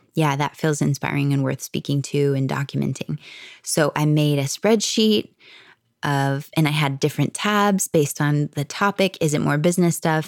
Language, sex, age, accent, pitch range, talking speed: English, female, 20-39, American, 145-170 Hz, 175 wpm